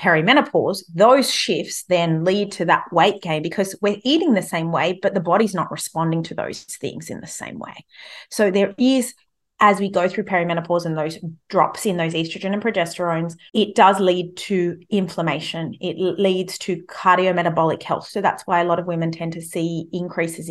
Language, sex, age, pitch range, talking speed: English, female, 30-49, 170-200 Hz, 185 wpm